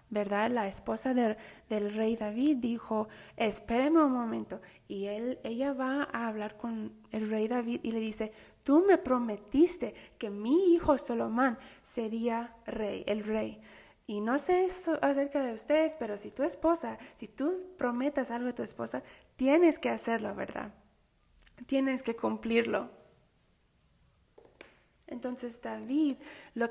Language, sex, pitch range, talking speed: English, female, 220-275 Hz, 140 wpm